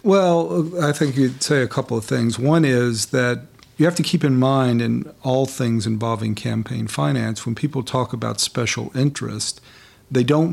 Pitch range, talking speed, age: 110-140 Hz, 180 wpm, 50-69